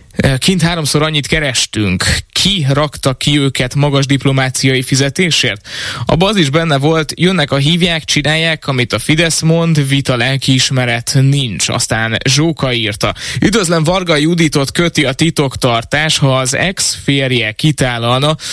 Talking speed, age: 125 wpm, 20-39